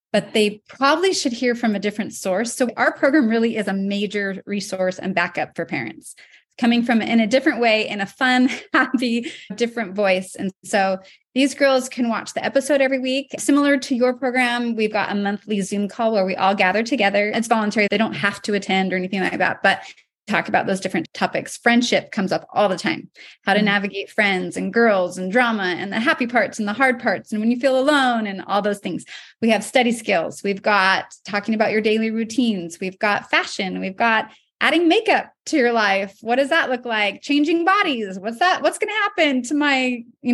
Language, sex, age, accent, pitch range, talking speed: English, female, 30-49, American, 205-265 Hz, 215 wpm